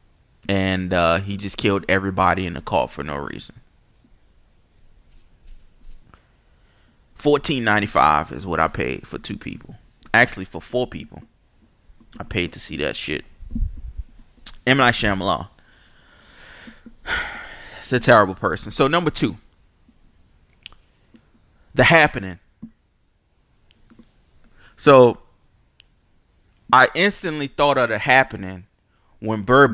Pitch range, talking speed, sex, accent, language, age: 95-140 Hz, 105 wpm, male, American, English, 20-39